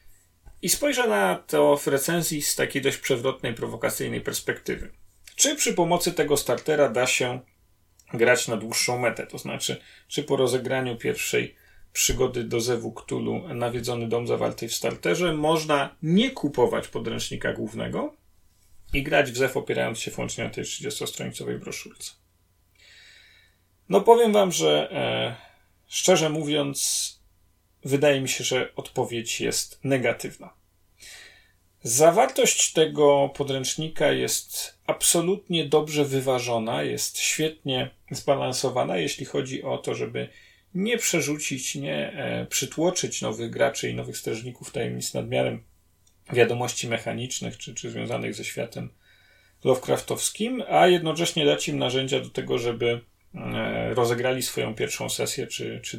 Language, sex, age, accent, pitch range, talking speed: Polish, male, 40-59, native, 100-155 Hz, 125 wpm